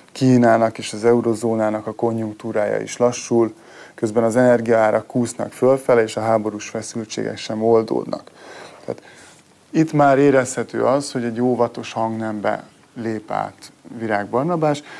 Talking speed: 130 wpm